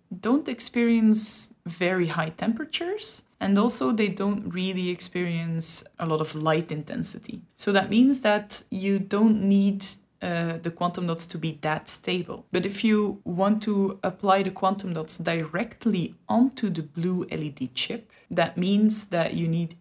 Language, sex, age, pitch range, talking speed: English, female, 20-39, 165-200 Hz, 155 wpm